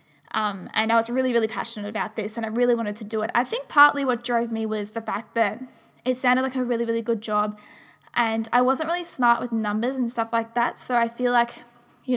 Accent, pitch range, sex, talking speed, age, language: Australian, 225-255 Hz, female, 245 wpm, 10-29, English